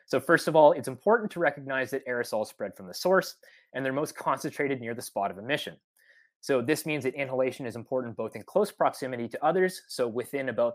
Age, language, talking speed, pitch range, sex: 20-39, English, 220 wpm, 120-155 Hz, male